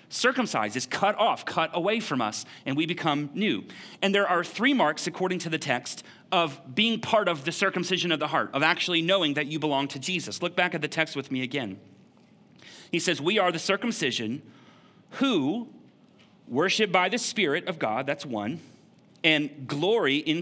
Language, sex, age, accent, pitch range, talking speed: English, male, 30-49, American, 155-200 Hz, 190 wpm